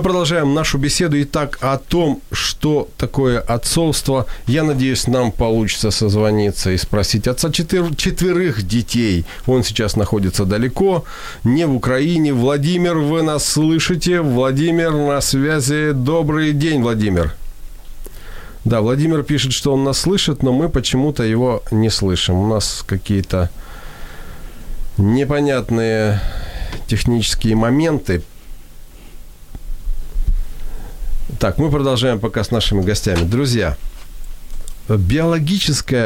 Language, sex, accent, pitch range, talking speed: Ukrainian, male, native, 95-145 Hz, 105 wpm